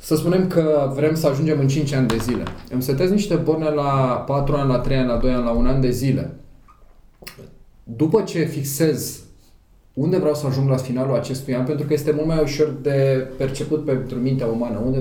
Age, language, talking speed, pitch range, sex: 20-39, Romanian, 210 wpm, 125-150 Hz, male